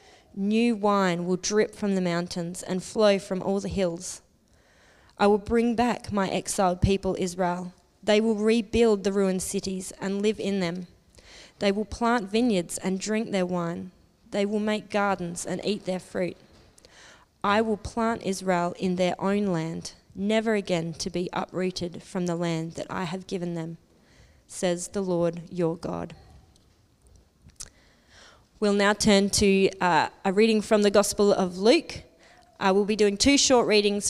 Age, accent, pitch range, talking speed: 20-39, Australian, 185-210 Hz, 160 wpm